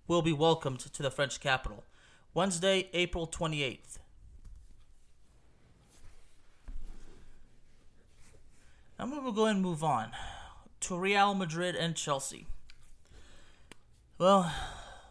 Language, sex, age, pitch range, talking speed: English, male, 30-49, 130-170 Hz, 90 wpm